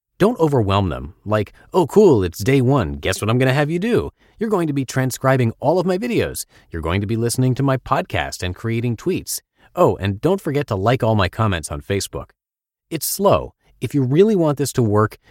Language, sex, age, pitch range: English, male, 30-49, 95-135 Hz